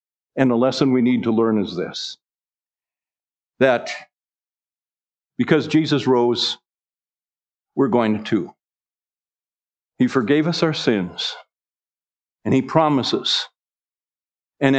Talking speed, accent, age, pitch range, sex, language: 100 wpm, American, 50-69, 115-160 Hz, male, English